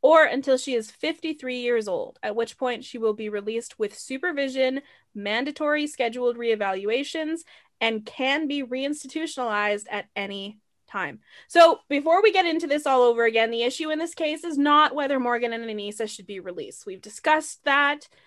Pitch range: 225-305 Hz